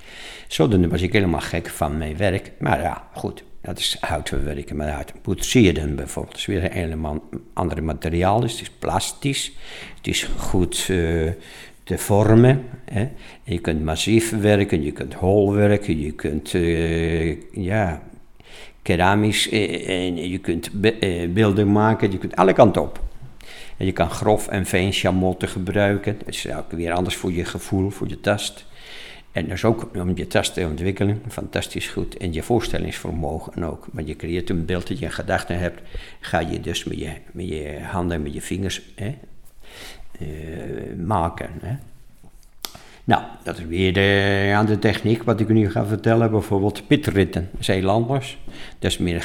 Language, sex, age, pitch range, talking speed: Dutch, male, 60-79, 85-105 Hz, 175 wpm